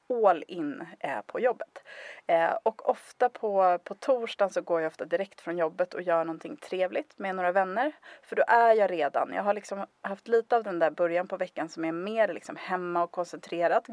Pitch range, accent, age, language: 170-220 Hz, native, 30-49, Swedish